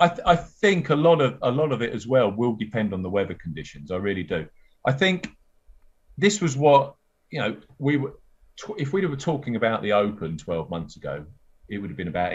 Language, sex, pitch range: English, male, 90-125 Hz